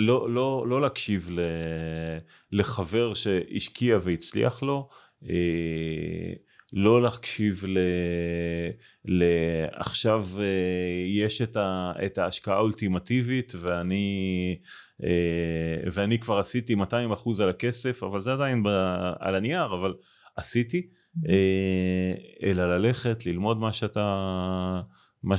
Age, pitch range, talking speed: 30-49, 90-110 Hz, 110 wpm